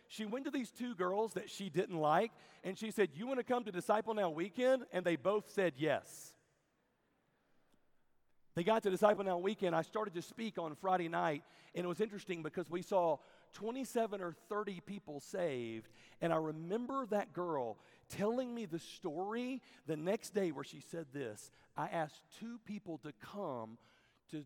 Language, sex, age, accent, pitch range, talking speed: English, male, 40-59, American, 165-220 Hz, 180 wpm